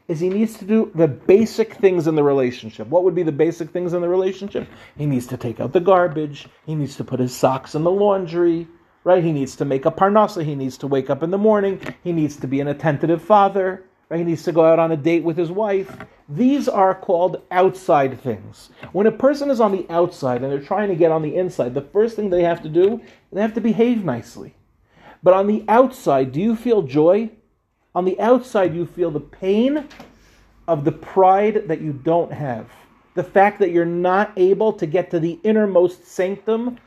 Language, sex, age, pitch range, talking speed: English, male, 40-59, 145-195 Hz, 220 wpm